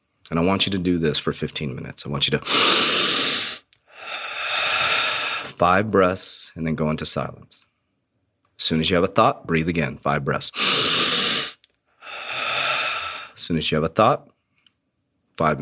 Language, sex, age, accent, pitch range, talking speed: English, male, 30-49, American, 80-100 Hz, 155 wpm